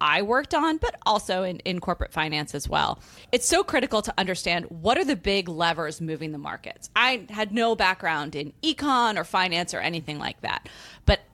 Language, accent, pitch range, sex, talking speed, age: English, American, 170-220 Hz, female, 195 wpm, 30-49